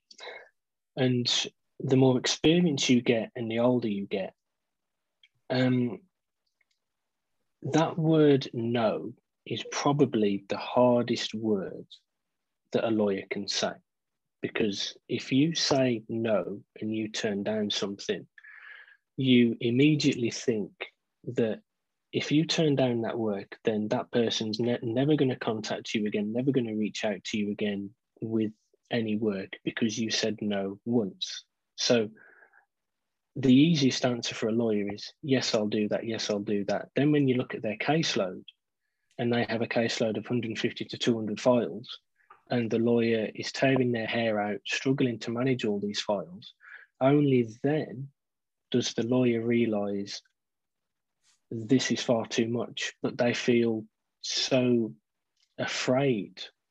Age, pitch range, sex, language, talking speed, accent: 30-49, 110-130 Hz, male, English, 140 wpm, British